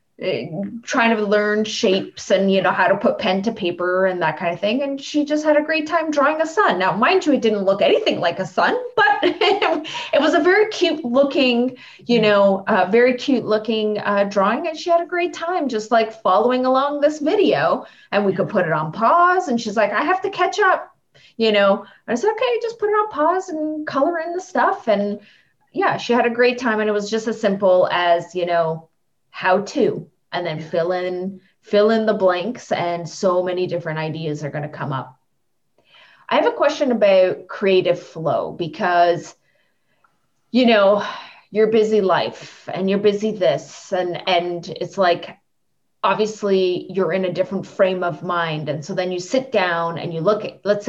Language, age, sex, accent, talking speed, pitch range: English, 20-39, female, American, 200 wpm, 180-270 Hz